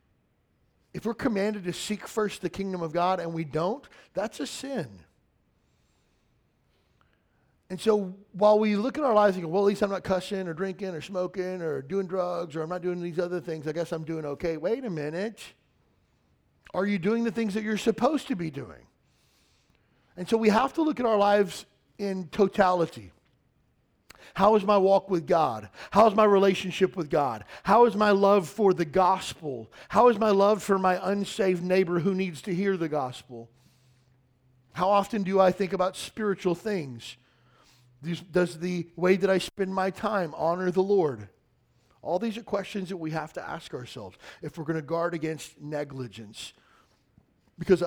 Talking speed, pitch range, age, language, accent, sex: 180 wpm, 160-200 Hz, 40-59, English, American, male